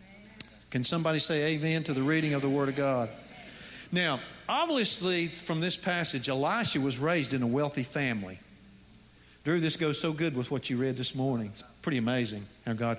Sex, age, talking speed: male, 50-69, 185 wpm